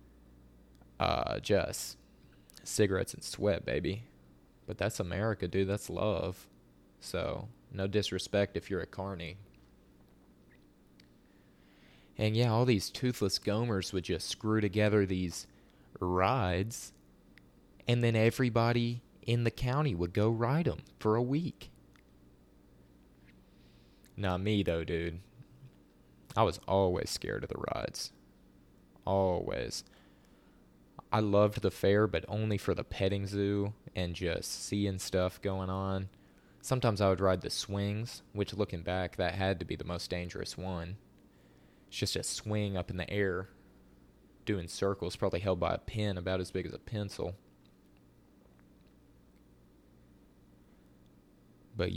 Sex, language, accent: male, English, American